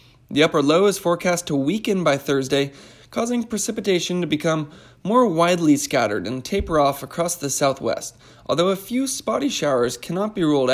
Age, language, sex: 20-39, English, male